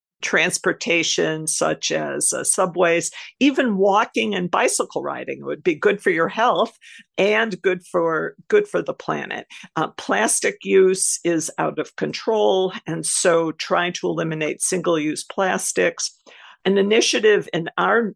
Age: 50-69